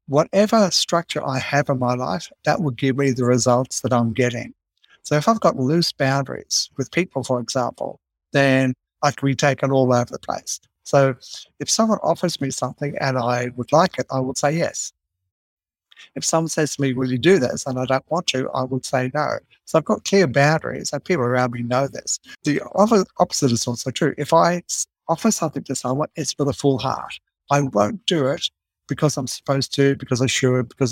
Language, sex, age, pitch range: English, male, 60-79, 125-145 Hz